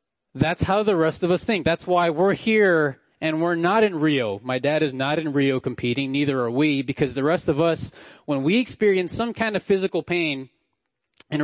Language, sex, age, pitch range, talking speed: English, male, 20-39, 130-170 Hz, 210 wpm